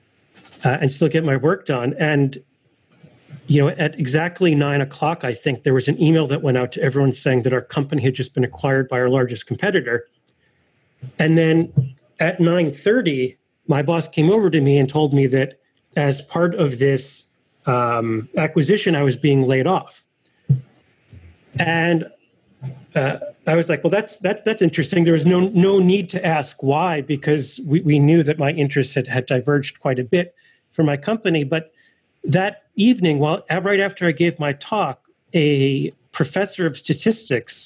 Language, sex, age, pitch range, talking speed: English, male, 30-49, 135-170 Hz, 180 wpm